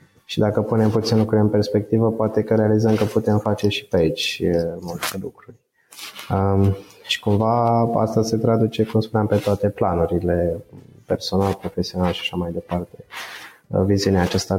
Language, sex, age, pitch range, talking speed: Romanian, male, 20-39, 95-110 Hz, 150 wpm